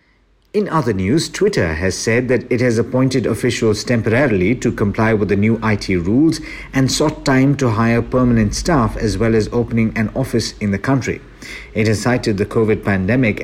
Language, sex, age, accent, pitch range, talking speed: English, male, 50-69, Indian, 100-130 Hz, 185 wpm